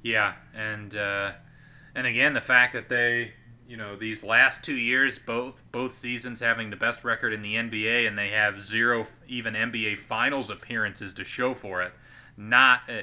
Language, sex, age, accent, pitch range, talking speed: English, male, 30-49, American, 115-140 Hz, 175 wpm